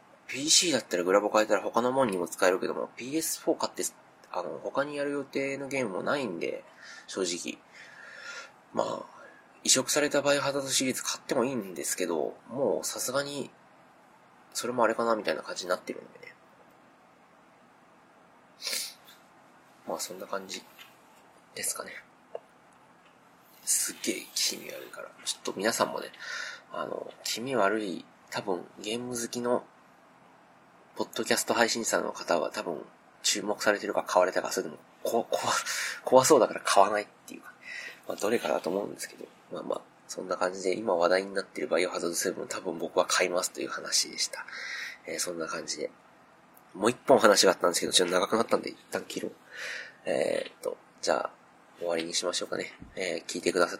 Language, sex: Japanese, male